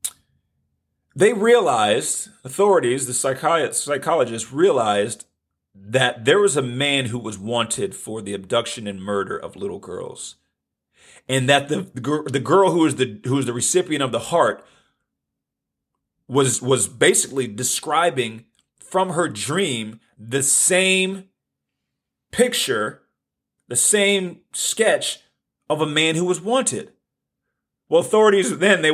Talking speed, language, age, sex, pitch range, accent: 130 wpm, English, 40-59, male, 100-145 Hz, American